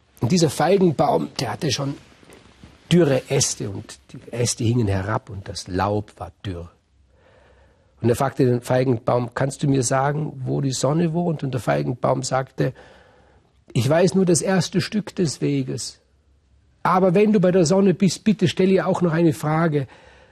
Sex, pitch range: male, 120-175 Hz